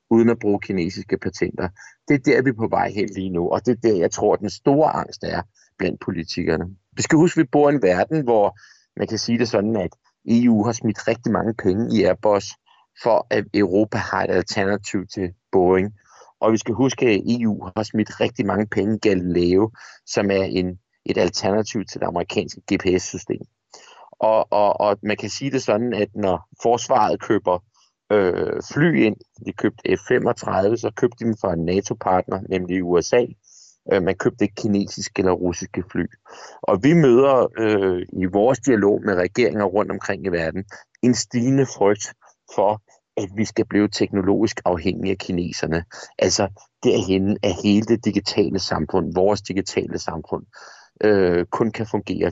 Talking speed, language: 175 wpm, Danish